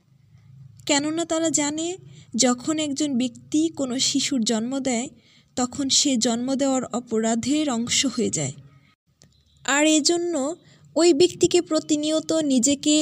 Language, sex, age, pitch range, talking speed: Bengali, female, 20-39, 225-295 Hz, 110 wpm